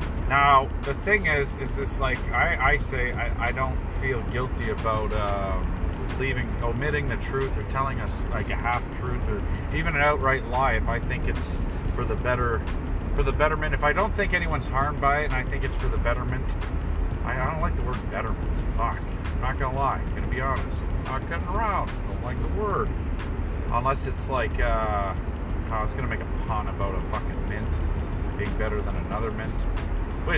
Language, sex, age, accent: English, male, 30-49, American